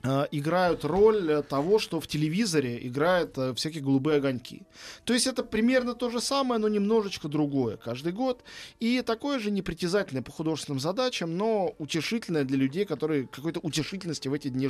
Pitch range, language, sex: 135-190 Hz, Russian, male